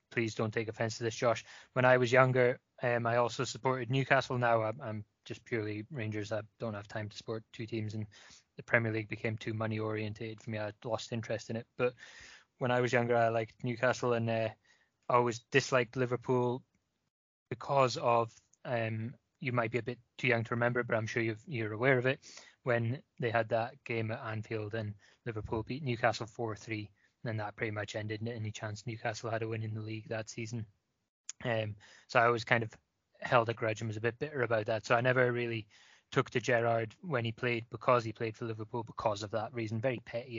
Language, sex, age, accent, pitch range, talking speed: English, male, 20-39, British, 110-125 Hz, 215 wpm